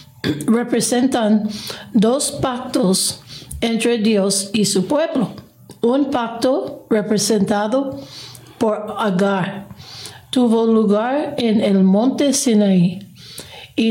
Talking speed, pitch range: 85 wpm, 195-255 Hz